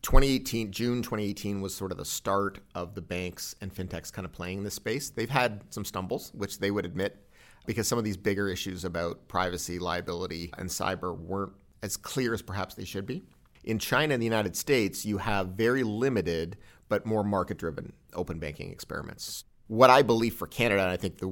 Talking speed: 205 wpm